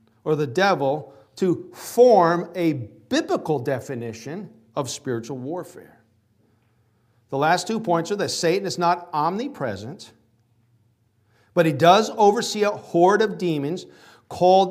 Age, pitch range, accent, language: 50-69, 115-180 Hz, American, English